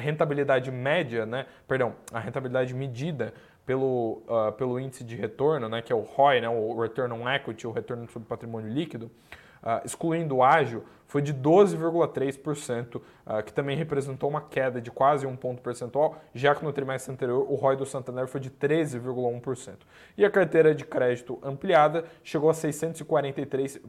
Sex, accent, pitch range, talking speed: male, Brazilian, 125-155 Hz, 170 wpm